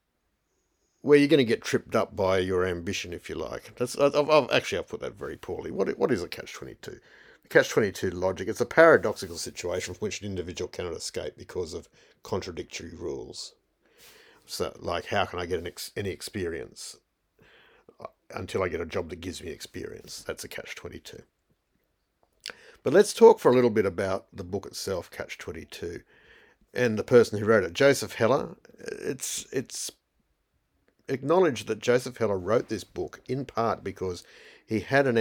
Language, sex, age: English, male, 50-69